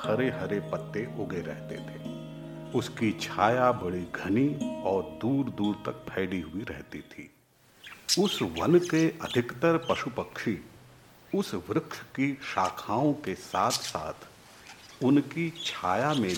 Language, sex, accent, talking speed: Hindi, male, native, 115 wpm